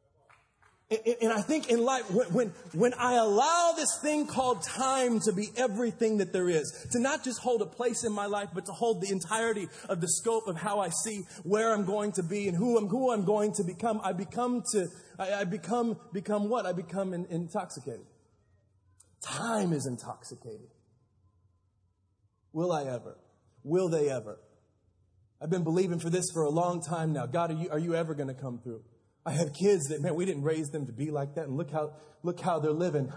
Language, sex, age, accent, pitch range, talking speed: English, male, 30-49, American, 140-190 Hz, 210 wpm